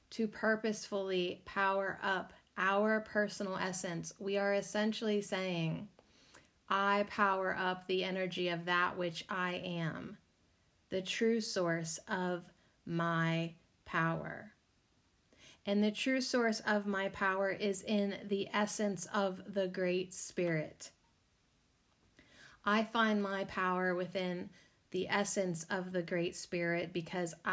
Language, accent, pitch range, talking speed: English, American, 175-205 Hz, 120 wpm